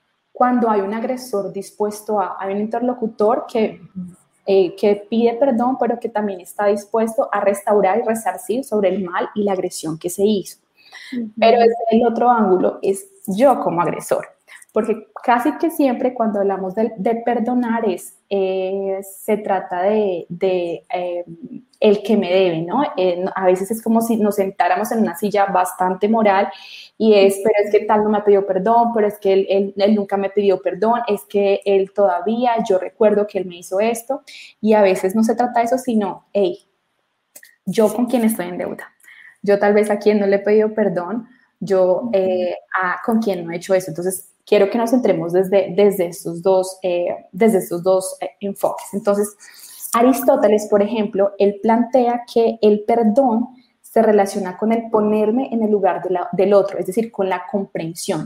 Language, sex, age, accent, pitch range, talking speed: English, female, 20-39, Colombian, 190-230 Hz, 185 wpm